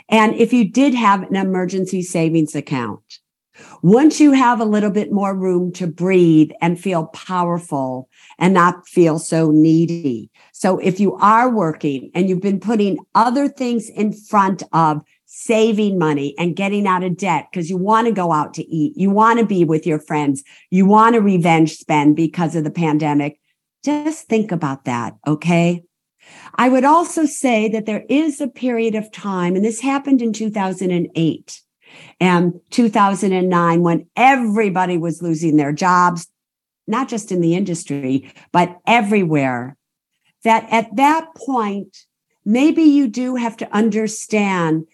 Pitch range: 165-225 Hz